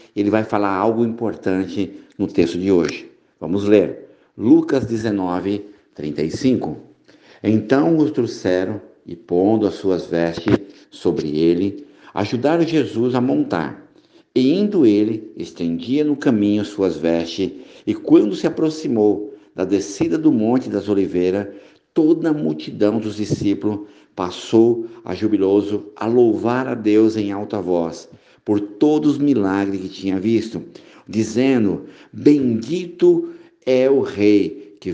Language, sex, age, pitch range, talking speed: Portuguese, male, 50-69, 95-120 Hz, 125 wpm